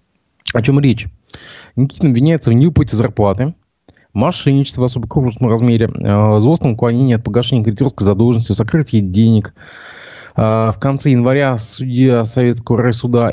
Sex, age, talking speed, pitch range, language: male, 20-39, 125 wpm, 105-130 Hz, Russian